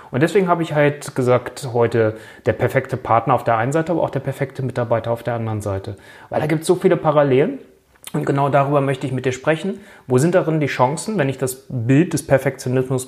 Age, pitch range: 30-49, 115-155 Hz